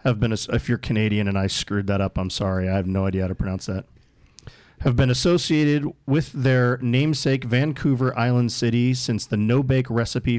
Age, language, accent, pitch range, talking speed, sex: 40-59, English, American, 105-135 Hz, 190 wpm, male